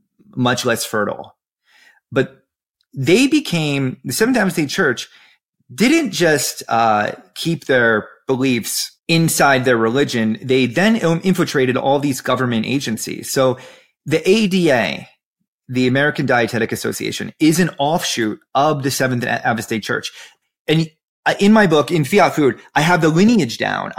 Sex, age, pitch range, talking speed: male, 30-49, 120-165 Hz, 135 wpm